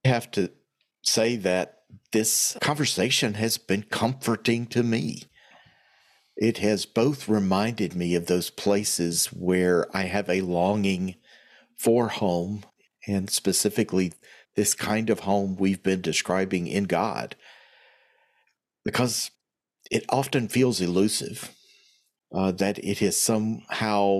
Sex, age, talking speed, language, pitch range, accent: male, 50-69, 115 wpm, English, 95-115 Hz, American